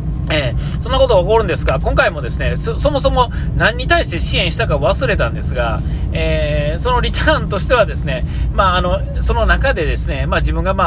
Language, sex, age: Japanese, male, 40-59